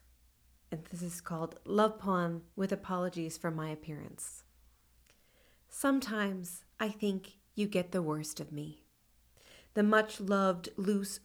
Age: 40-59